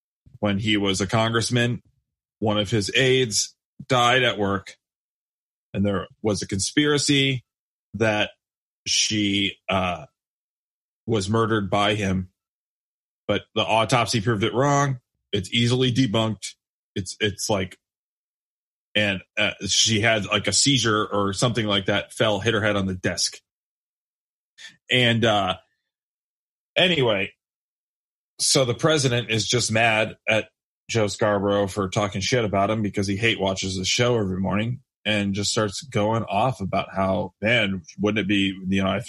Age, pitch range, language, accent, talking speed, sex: 30-49, 100-120 Hz, English, American, 145 wpm, male